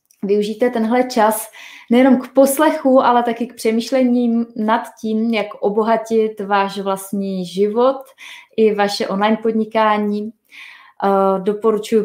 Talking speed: 110 wpm